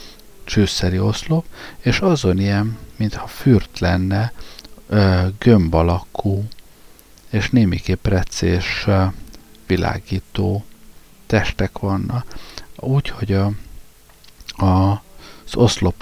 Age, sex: 50-69, male